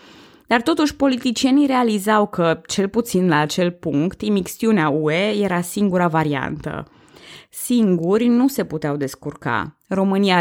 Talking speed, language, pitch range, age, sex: 120 wpm, Romanian, 155-210 Hz, 20-39, female